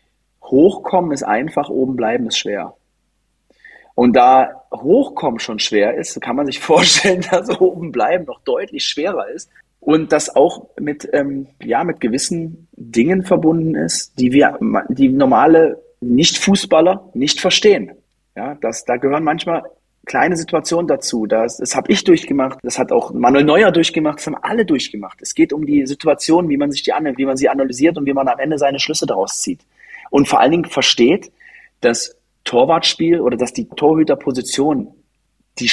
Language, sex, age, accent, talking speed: German, male, 30-49, German, 170 wpm